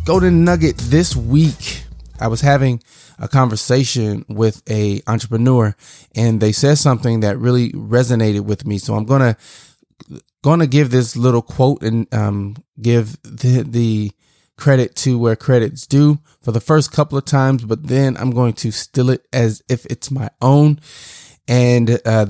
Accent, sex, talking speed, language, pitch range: American, male, 165 wpm, English, 110-135 Hz